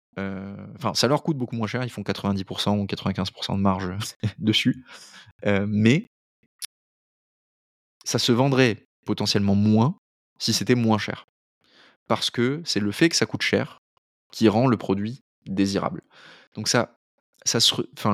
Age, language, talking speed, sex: 20-39, French, 150 wpm, male